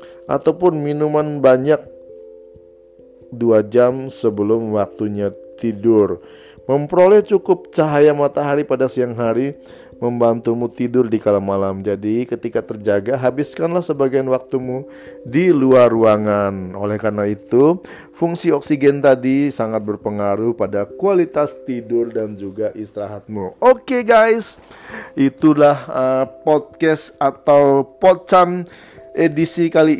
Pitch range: 115-160 Hz